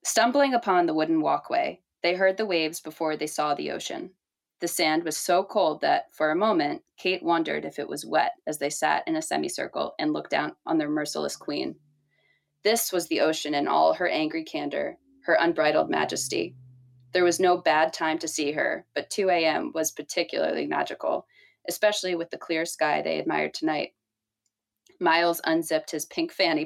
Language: English